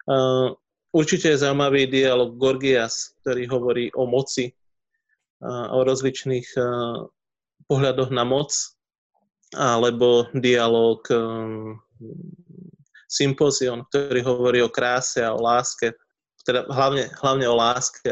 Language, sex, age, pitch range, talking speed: Slovak, male, 20-39, 125-140 Hz, 110 wpm